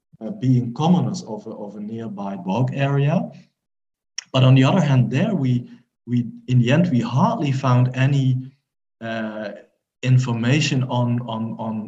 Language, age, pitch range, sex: English, 50-69, 115-140 Hz, male